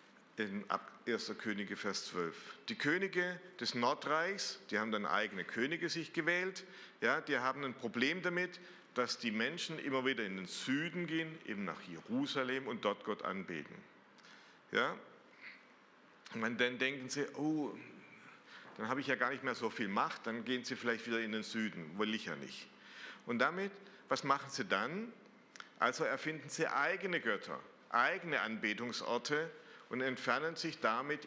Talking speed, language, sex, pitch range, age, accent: 155 wpm, German, male, 115-160 Hz, 50-69, German